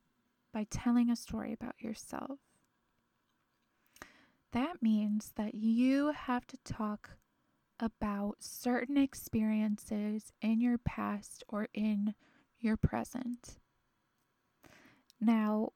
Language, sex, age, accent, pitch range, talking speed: English, female, 20-39, American, 215-250 Hz, 90 wpm